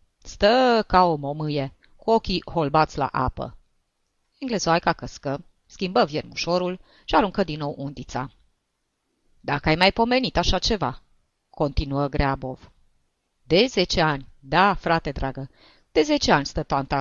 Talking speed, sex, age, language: 130 wpm, female, 30-49, Romanian